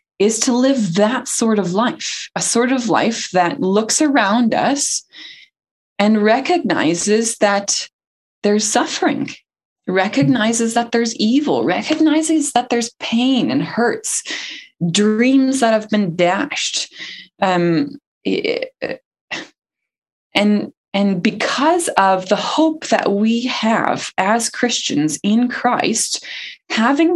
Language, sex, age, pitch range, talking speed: English, female, 20-39, 200-275 Hz, 110 wpm